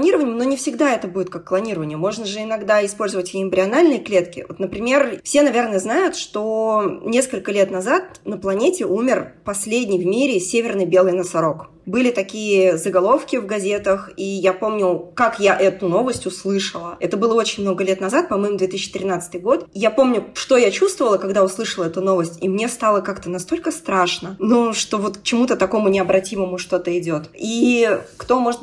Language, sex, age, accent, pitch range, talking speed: Russian, female, 20-39, native, 185-235 Hz, 165 wpm